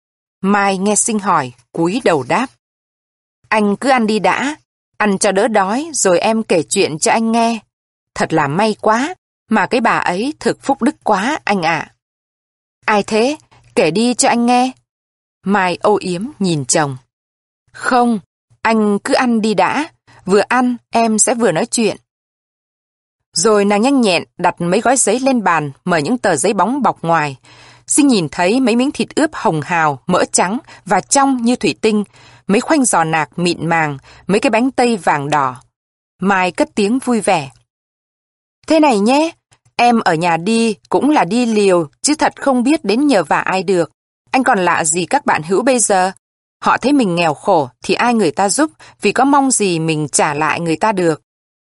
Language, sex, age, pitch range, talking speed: Vietnamese, female, 20-39, 165-245 Hz, 185 wpm